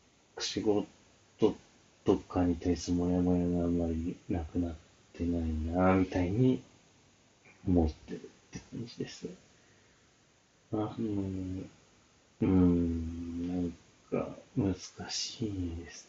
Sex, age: male, 30-49